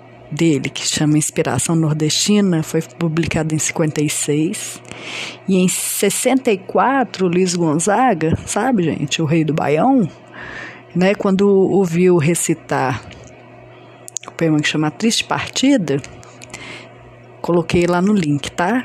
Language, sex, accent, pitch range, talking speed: Portuguese, female, Brazilian, 150-195 Hz, 115 wpm